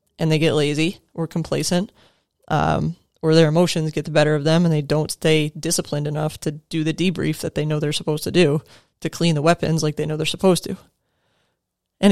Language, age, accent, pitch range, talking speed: English, 20-39, American, 155-180 Hz, 215 wpm